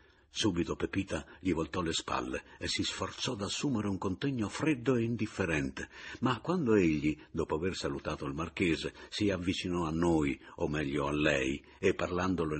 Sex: male